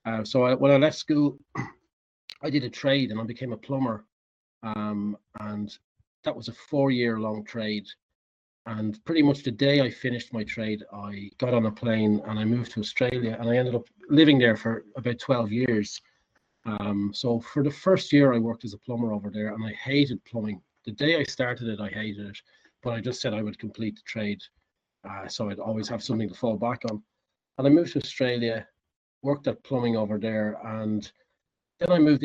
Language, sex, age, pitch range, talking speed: English, male, 30-49, 105-130 Hz, 205 wpm